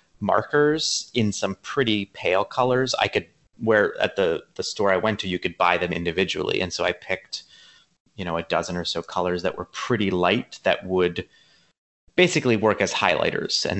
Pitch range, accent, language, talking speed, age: 90-110 Hz, American, English, 185 wpm, 30-49